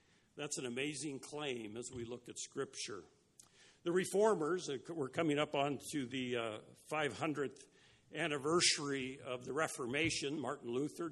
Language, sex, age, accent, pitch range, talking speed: English, male, 50-69, American, 135-175 Hz, 130 wpm